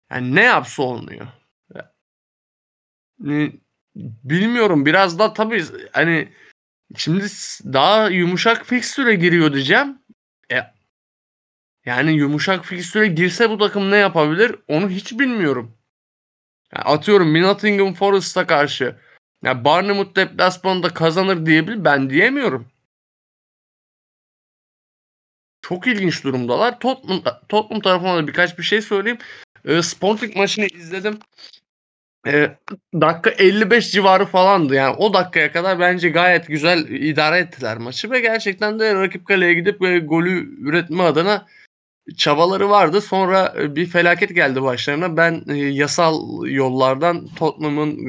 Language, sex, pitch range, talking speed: Turkish, male, 145-195 Hz, 115 wpm